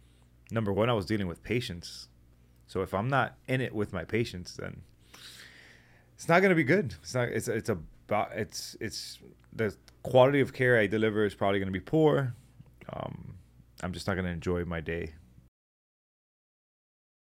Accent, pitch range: American, 90-115 Hz